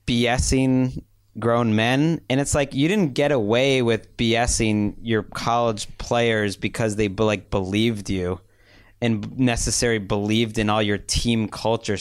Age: 30-49